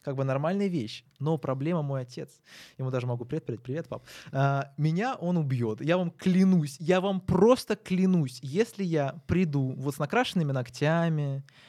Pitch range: 135-175 Hz